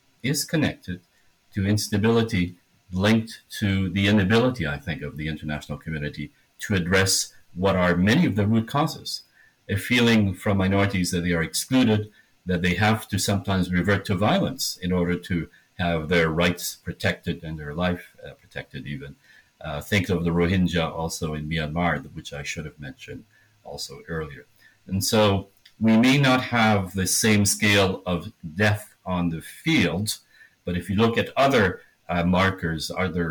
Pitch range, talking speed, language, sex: 85-105 Hz, 160 wpm, English, male